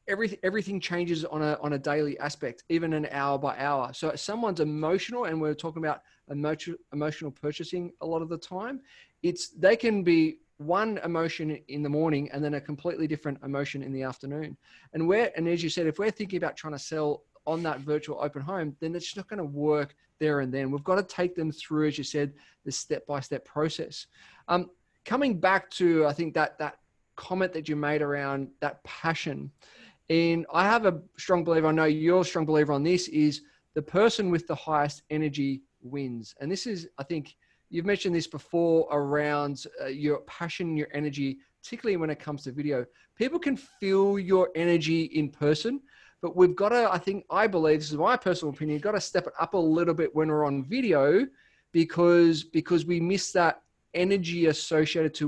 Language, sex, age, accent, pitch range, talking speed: English, male, 20-39, Australian, 150-180 Hz, 200 wpm